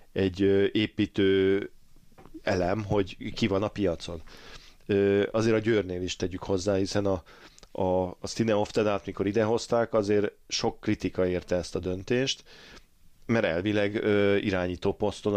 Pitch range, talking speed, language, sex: 95-105 Hz, 130 wpm, Hungarian, male